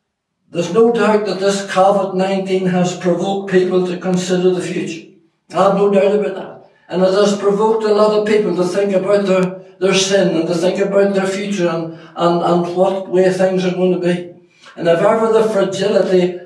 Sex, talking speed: male, 195 wpm